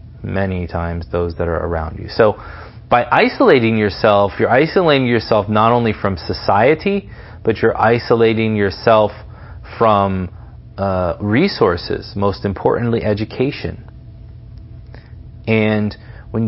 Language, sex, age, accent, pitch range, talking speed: English, male, 40-59, American, 105-130 Hz, 110 wpm